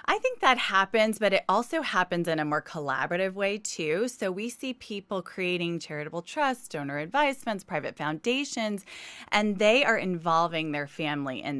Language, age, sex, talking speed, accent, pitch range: English, 20-39, female, 165 wpm, American, 150-195 Hz